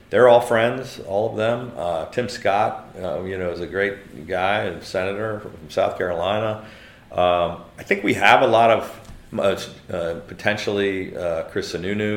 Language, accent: English, American